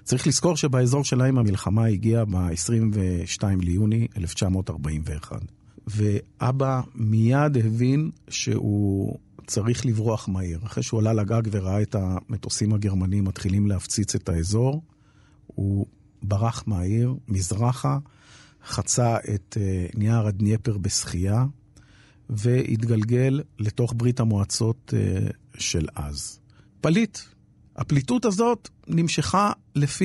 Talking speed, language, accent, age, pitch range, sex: 95 wpm, Hebrew, native, 50-69, 105-135 Hz, male